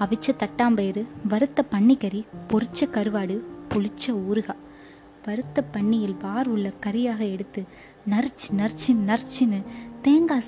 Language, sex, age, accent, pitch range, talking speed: Tamil, female, 20-39, native, 200-250 Hz, 110 wpm